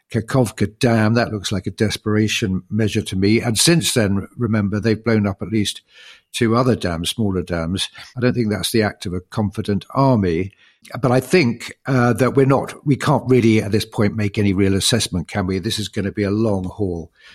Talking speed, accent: 210 wpm, British